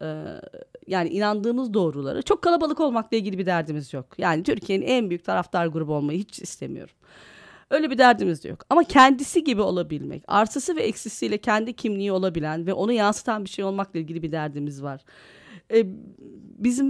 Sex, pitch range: female, 170-250 Hz